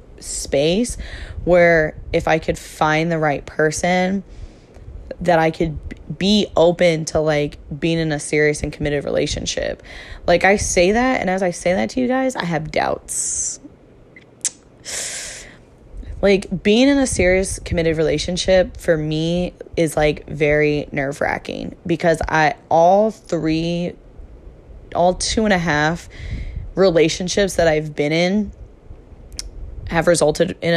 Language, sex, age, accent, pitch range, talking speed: English, female, 10-29, American, 155-185 Hz, 135 wpm